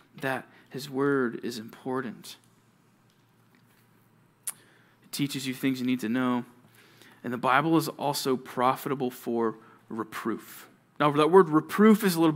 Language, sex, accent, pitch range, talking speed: English, male, American, 125-175 Hz, 135 wpm